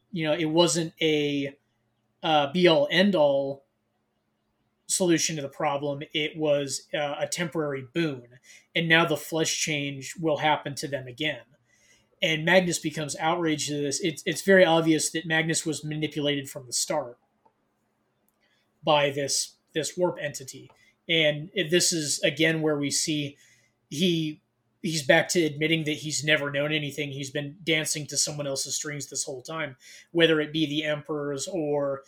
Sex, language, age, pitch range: male, English, 20-39, 140-165 Hz